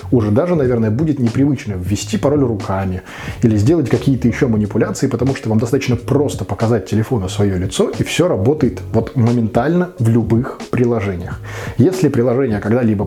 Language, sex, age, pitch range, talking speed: Russian, male, 20-39, 105-135 Hz, 150 wpm